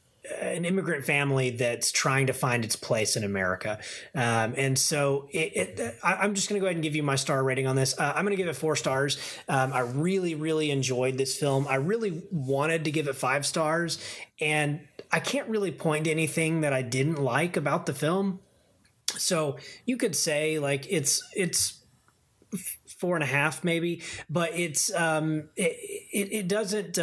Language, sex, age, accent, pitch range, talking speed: English, male, 30-49, American, 125-165 Hz, 185 wpm